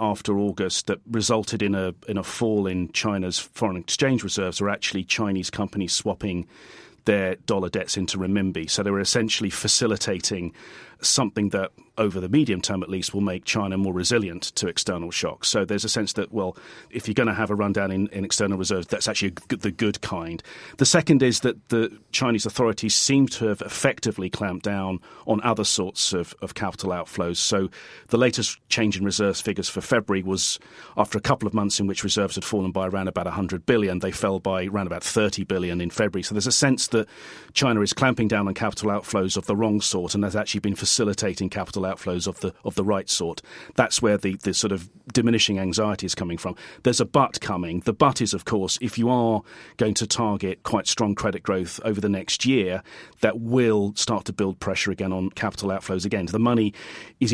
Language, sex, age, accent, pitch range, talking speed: English, male, 40-59, British, 95-110 Hz, 205 wpm